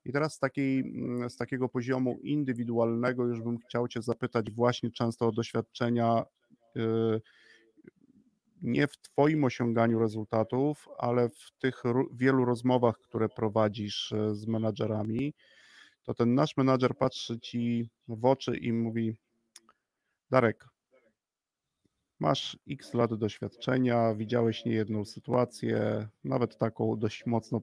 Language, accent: Polish, native